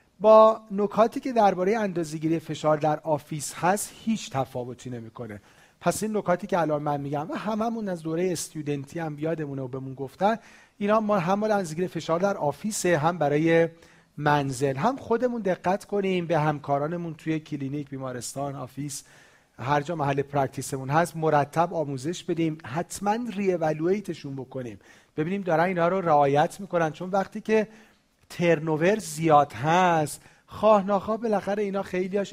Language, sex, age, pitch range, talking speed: Persian, male, 40-59, 145-195 Hz, 145 wpm